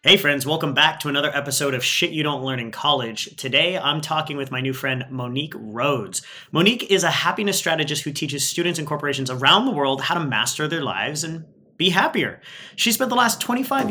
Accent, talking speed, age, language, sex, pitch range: American, 210 wpm, 30-49, English, male, 135-175 Hz